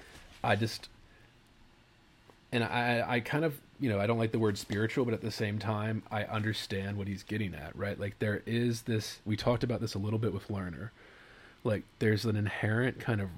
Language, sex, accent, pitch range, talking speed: English, male, American, 100-115 Hz, 205 wpm